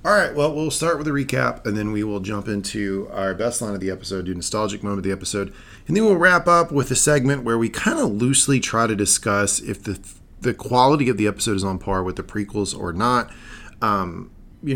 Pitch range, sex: 95-115 Hz, male